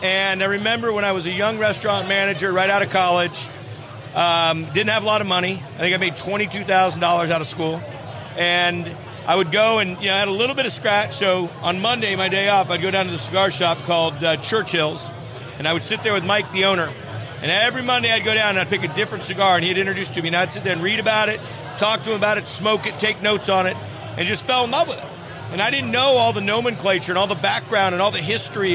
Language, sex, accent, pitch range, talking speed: English, male, American, 165-210 Hz, 265 wpm